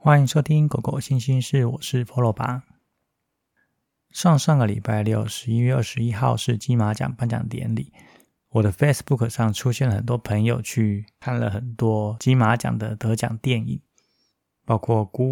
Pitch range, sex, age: 110-125 Hz, male, 20-39